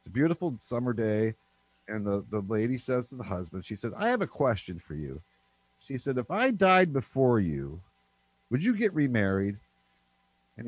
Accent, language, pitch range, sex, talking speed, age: American, English, 110-185 Hz, male, 185 wpm, 50-69